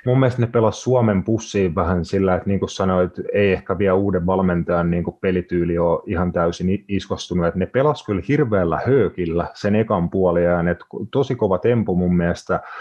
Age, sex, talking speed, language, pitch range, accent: 30-49, male, 175 wpm, Finnish, 90-105 Hz, native